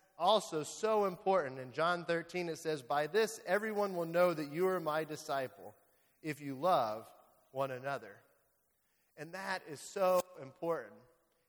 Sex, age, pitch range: male, 30-49, 145-180 Hz